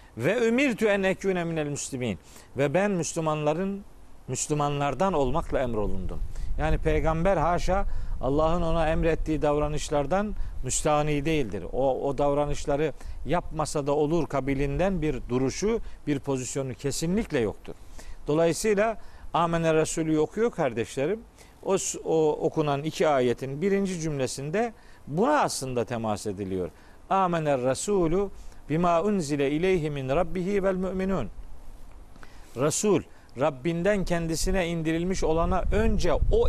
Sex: male